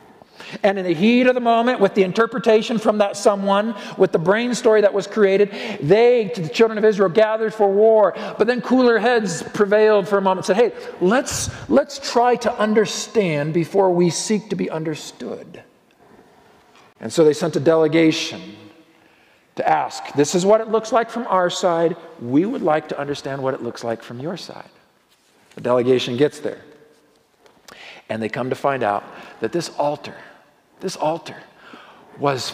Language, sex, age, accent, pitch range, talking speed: English, male, 50-69, American, 155-215 Hz, 175 wpm